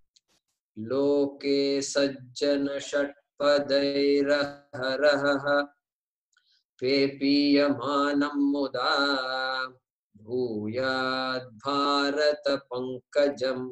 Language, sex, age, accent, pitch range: English, male, 20-39, Indian, 125-140 Hz